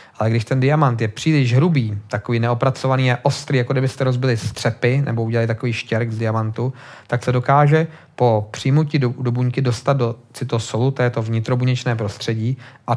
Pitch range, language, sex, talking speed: 110-125 Hz, Czech, male, 170 wpm